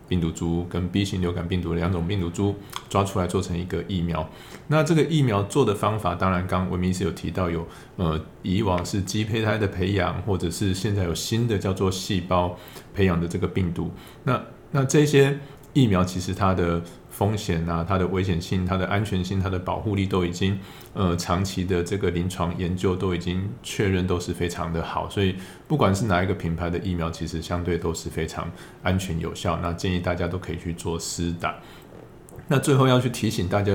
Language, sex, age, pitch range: Chinese, male, 20-39, 90-100 Hz